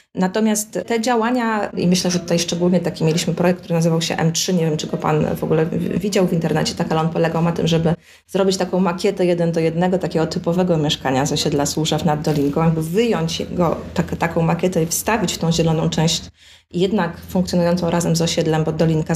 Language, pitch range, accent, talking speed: Polish, 165-195 Hz, native, 205 wpm